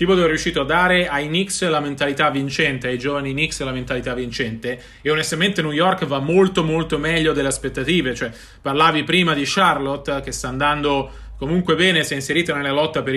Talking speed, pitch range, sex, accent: 190 wpm, 145-180 Hz, male, native